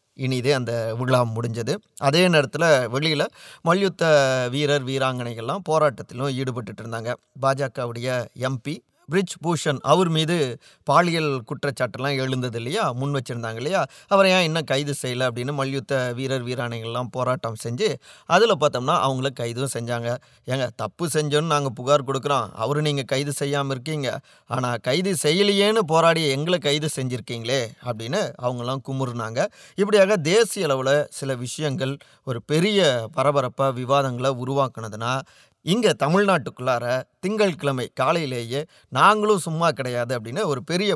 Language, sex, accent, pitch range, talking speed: Tamil, male, native, 125-155 Hz, 115 wpm